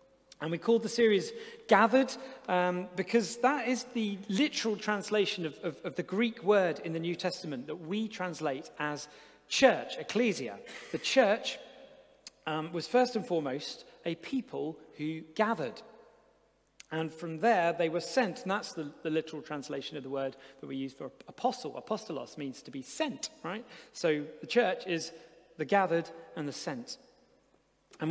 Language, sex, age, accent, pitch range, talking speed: English, male, 40-59, British, 150-195 Hz, 160 wpm